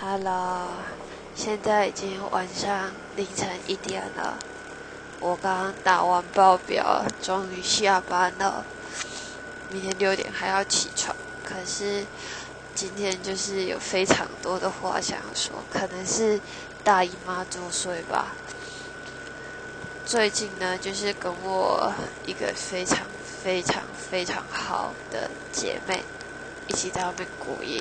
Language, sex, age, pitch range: Chinese, female, 20-39, 190-235 Hz